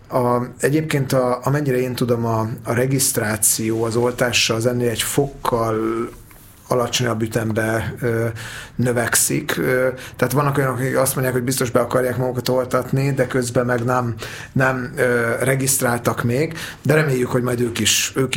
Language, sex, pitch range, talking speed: Hungarian, male, 120-140 Hz, 150 wpm